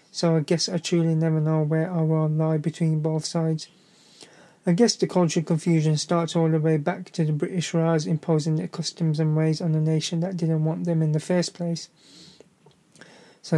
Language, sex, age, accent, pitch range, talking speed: English, male, 30-49, British, 155-170 Hz, 200 wpm